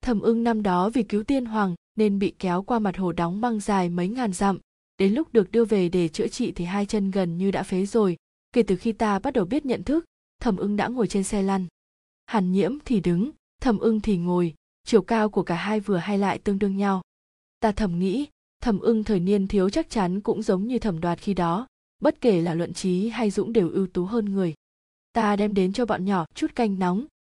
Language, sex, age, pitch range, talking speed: Vietnamese, female, 20-39, 190-230 Hz, 240 wpm